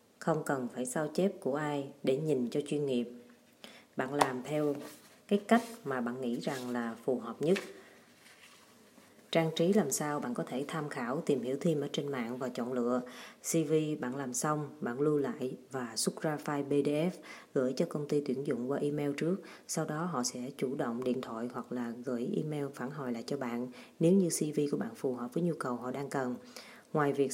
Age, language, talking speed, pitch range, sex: 20-39, Vietnamese, 210 wpm, 130-165 Hz, female